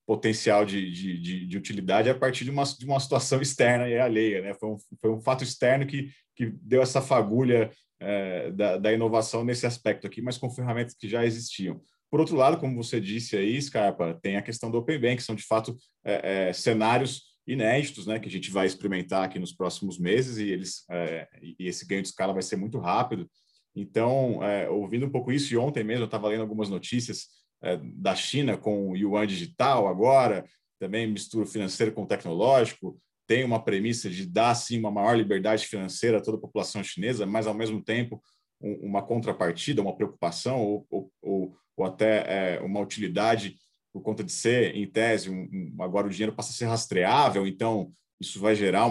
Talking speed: 200 wpm